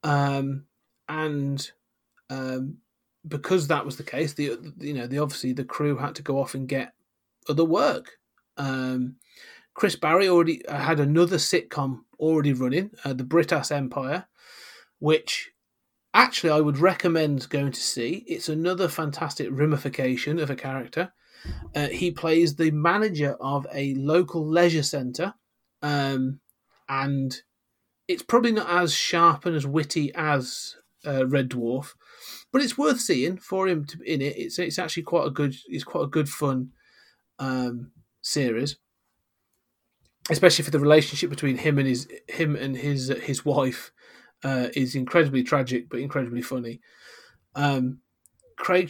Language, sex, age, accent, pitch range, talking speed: English, male, 30-49, British, 135-165 Hz, 145 wpm